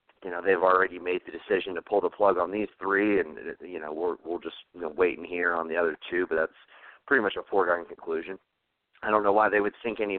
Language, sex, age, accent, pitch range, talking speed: English, male, 40-59, American, 95-145 Hz, 260 wpm